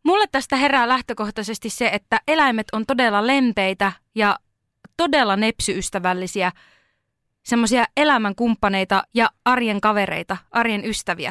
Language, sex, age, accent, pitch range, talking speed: Finnish, female, 20-39, native, 195-230 Hz, 110 wpm